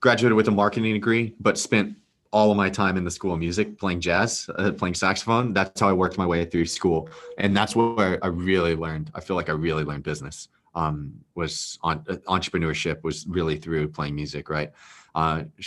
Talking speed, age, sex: 205 wpm, 30-49, male